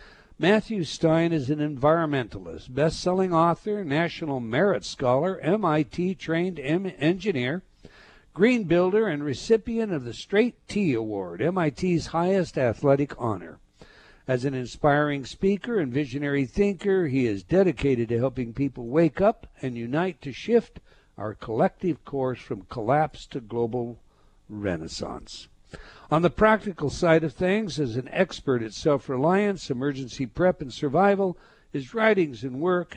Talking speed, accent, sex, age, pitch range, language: 130 wpm, American, male, 60-79, 130-175 Hz, English